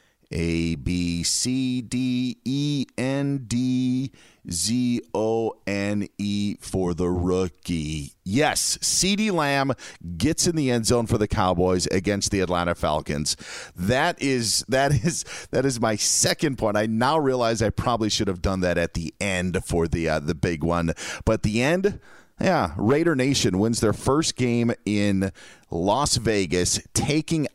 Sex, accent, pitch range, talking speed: male, American, 95-130 Hz, 155 wpm